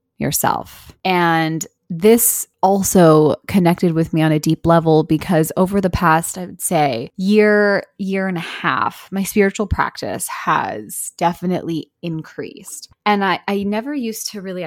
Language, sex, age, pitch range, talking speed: English, female, 20-39, 160-195 Hz, 145 wpm